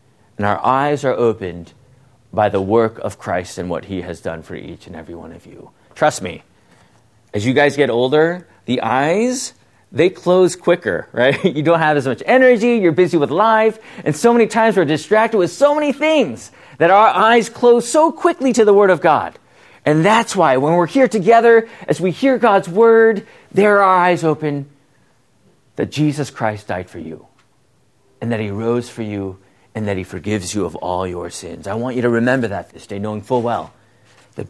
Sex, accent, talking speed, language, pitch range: male, American, 200 wpm, English, 110-170 Hz